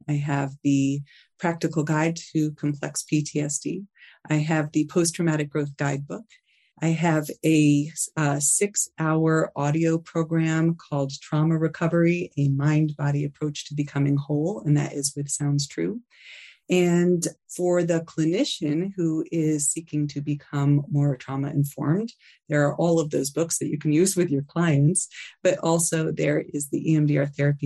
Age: 30-49